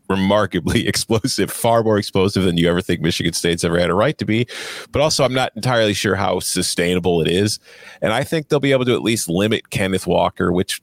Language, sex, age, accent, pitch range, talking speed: English, male, 30-49, American, 90-115 Hz, 225 wpm